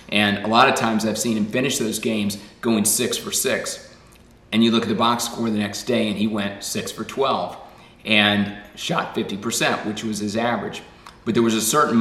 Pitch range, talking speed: 105-120 Hz, 215 wpm